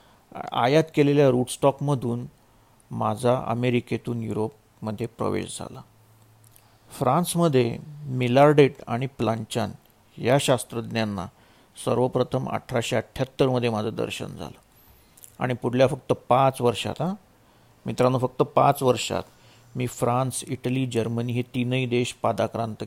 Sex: male